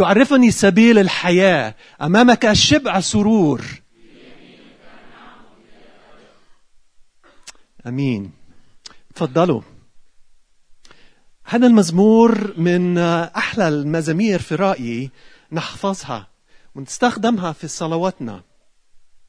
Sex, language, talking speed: male, Arabic, 60 wpm